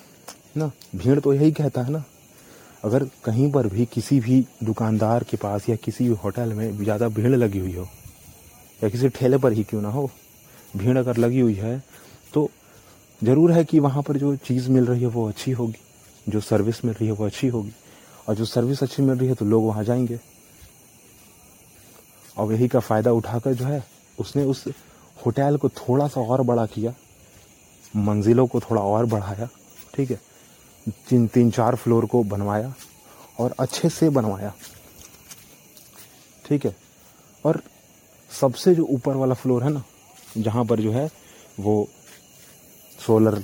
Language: Hindi